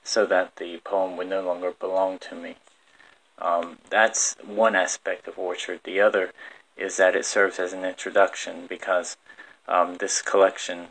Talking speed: 160 wpm